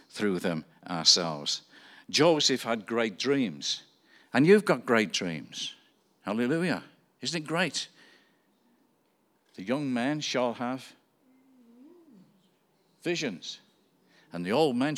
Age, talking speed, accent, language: 50-69, 105 wpm, British, English